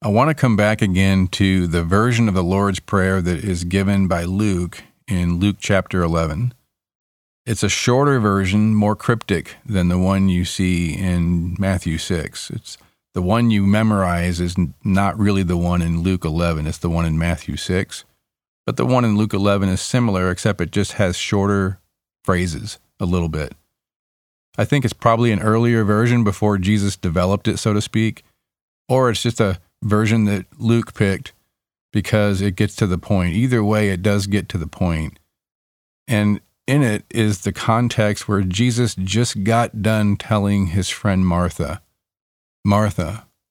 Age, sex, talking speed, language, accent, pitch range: 40-59, male, 170 wpm, English, American, 90-105 Hz